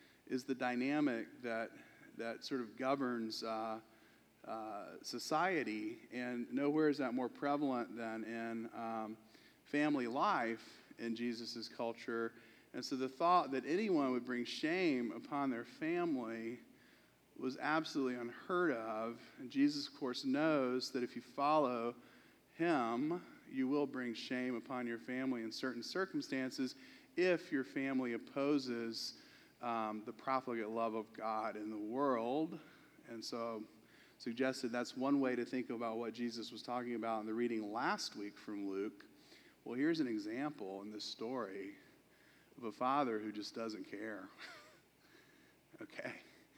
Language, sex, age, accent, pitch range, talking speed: English, male, 40-59, American, 115-160 Hz, 140 wpm